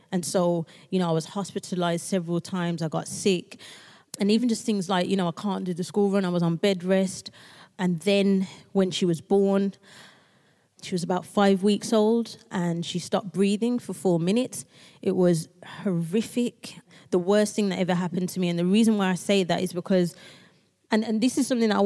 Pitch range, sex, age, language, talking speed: 180-205 Hz, female, 20-39, English, 205 wpm